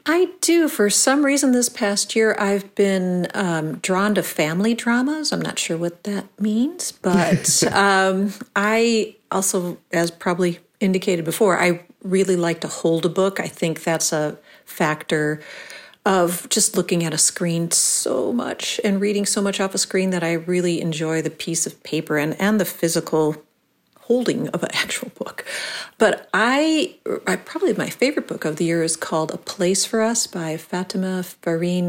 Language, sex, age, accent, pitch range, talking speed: English, female, 40-59, American, 160-210 Hz, 170 wpm